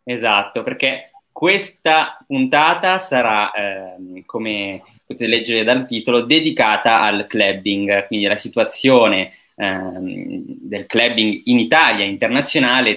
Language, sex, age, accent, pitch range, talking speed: Italian, male, 20-39, native, 105-130 Hz, 105 wpm